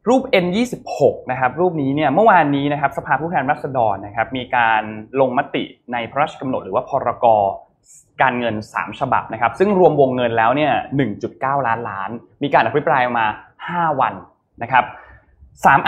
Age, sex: 20-39, male